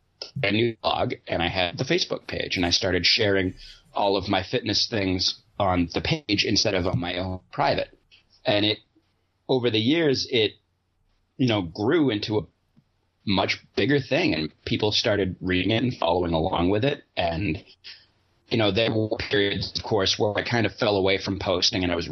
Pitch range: 90-110 Hz